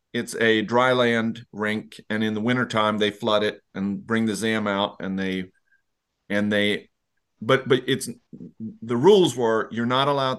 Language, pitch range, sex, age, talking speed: English, 105-130 Hz, male, 40-59, 175 wpm